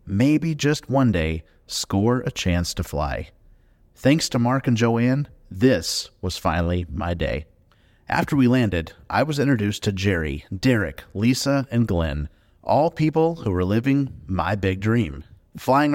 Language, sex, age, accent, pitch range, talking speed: English, male, 30-49, American, 95-125 Hz, 150 wpm